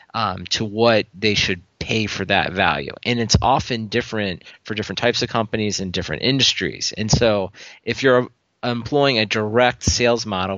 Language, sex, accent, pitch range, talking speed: English, male, American, 95-115 Hz, 175 wpm